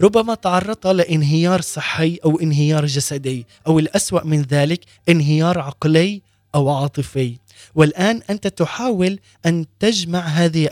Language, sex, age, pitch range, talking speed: Arabic, male, 20-39, 150-185 Hz, 120 wpm